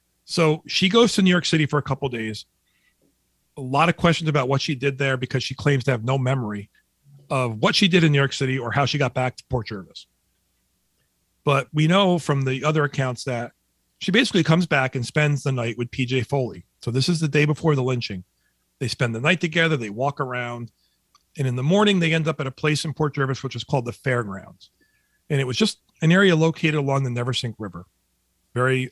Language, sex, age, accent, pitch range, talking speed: English, male, 40-59, American, 115-155 Hz, 230 wpm